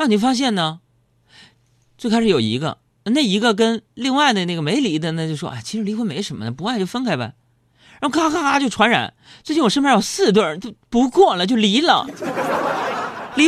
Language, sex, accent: Chinese, male, native